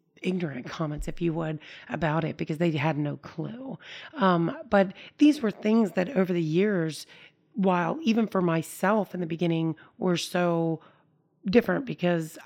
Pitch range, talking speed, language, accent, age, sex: 165-195 Hz, 155 wpm, English, American, 30-49, female